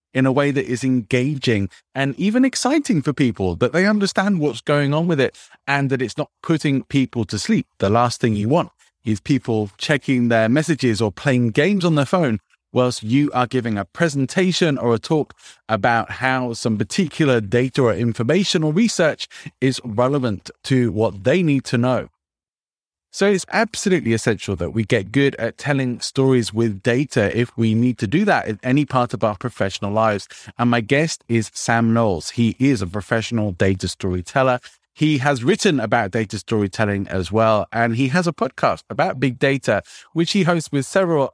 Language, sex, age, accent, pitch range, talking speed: English, male, 30-49, British, 110-145 Hz, 185 wpm